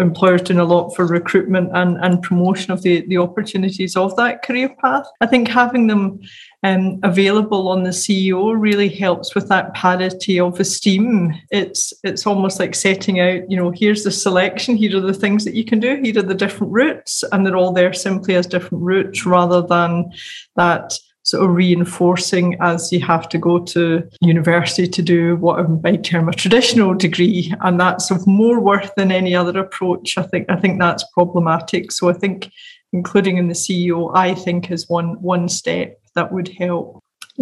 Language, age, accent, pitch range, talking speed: English, 30-49, British, 180-205 Hz, 190 wpm